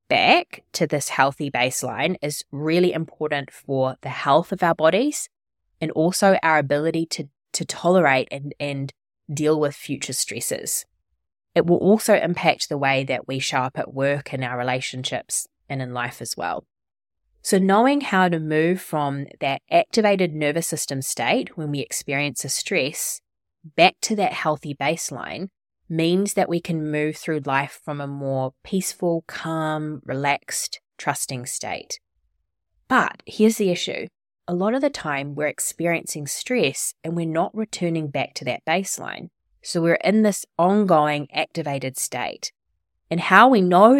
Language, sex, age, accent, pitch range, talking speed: English, female, 20-39, Australian, 140-180 Hz, 155 wpm